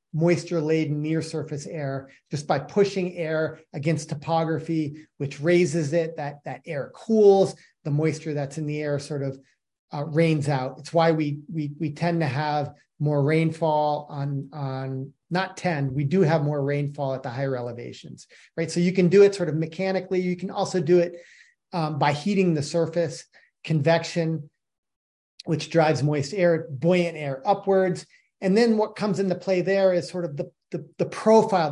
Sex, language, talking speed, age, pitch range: male, English, 170 wpm, 30-49, 145-180 Hz